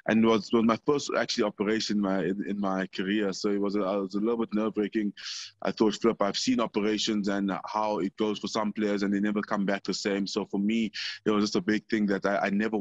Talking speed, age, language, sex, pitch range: 270 wpm, 20-39, English, male, 95-110 Hz